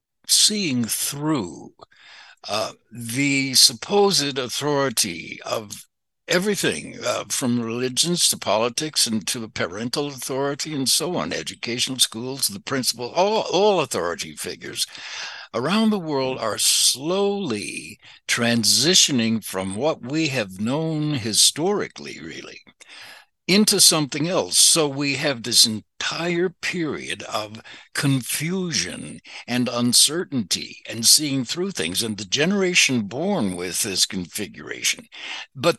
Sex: male